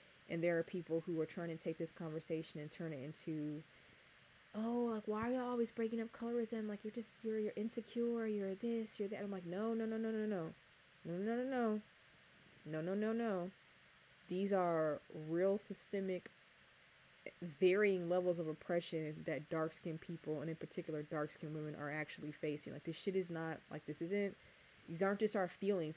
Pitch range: 160-200 Hz